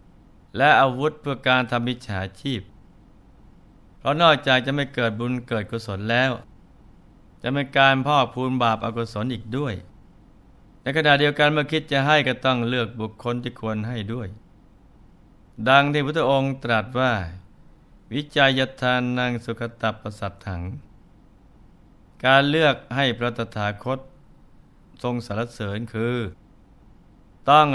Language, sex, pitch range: Thai, male, 110-135 Hz